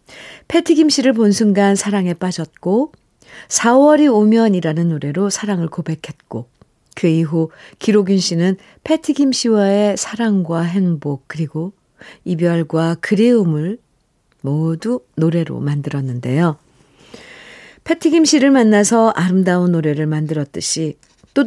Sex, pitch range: female, 160-235 Hz